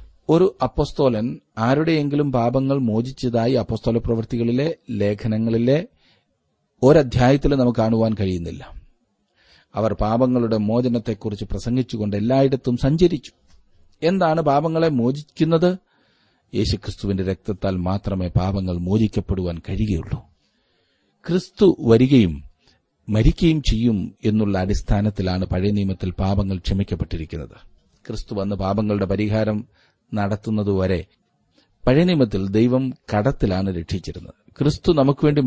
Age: 40-59